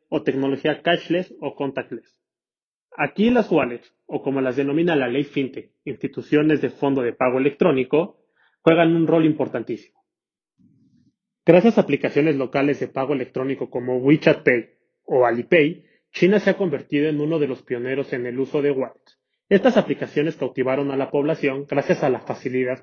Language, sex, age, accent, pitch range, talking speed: Spanish, male, 30-49, Mexican, 135-170 Hz, 160 wpm